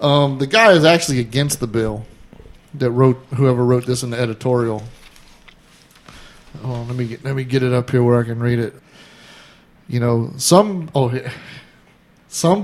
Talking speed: 155 wpm